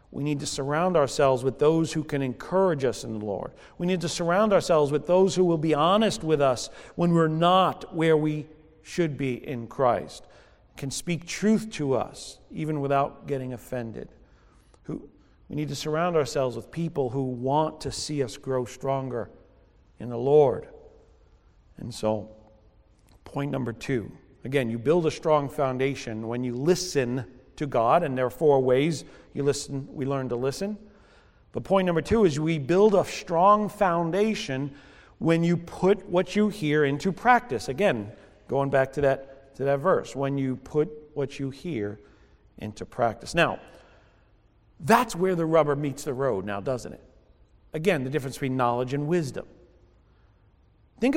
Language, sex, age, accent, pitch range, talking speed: English, male, 40-59, American, 125-170 Hz, 165 wpm